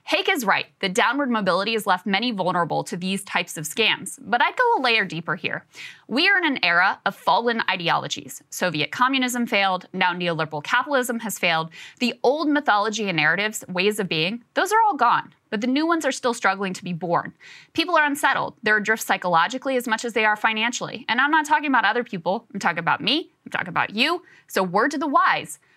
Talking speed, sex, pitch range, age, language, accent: 215 wpm, female, 195-275 Hz, 20-39, English, American